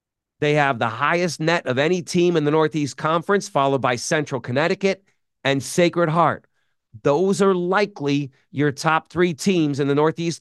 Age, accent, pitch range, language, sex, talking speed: 40-59, American, 135-185 Hz, English, male, 165 wpm